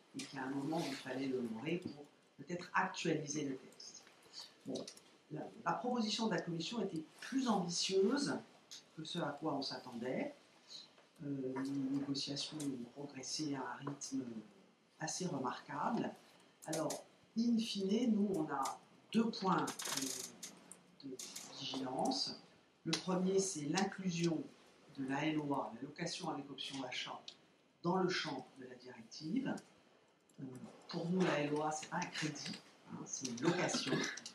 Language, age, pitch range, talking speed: French, 50-69, 135-180 Hz, 140 wpm